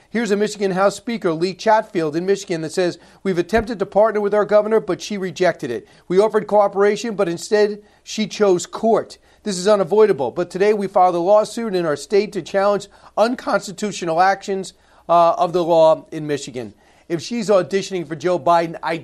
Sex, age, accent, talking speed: male, 40-59, American, 185 wpm